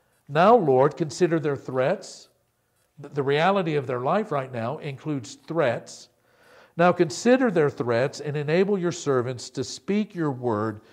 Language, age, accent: English, 50-69, American